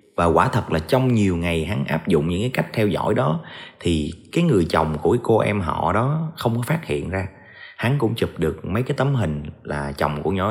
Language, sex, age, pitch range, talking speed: Vietnamese, male, 30-49, 85-125 Hz, 240 wpm